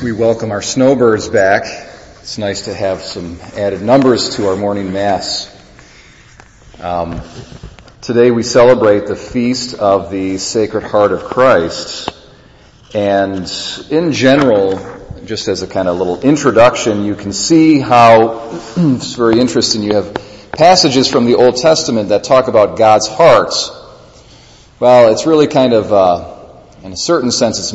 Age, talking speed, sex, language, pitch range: 40-59, 145 wpm, male, English, 95-120 Hz